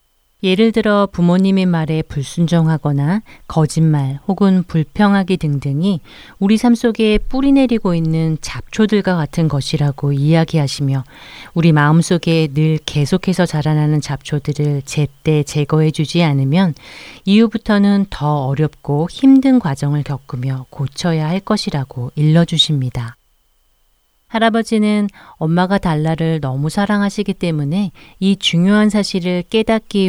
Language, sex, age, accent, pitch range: Korean, female, 40-59, native, 145-190 Hz